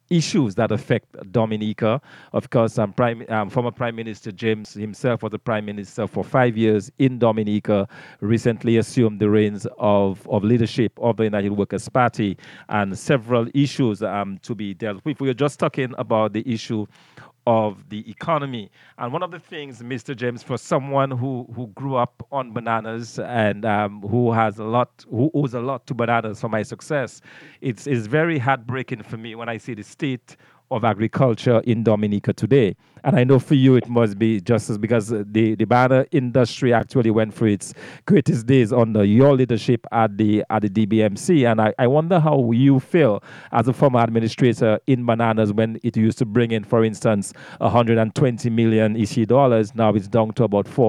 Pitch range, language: 110-130 Hz, English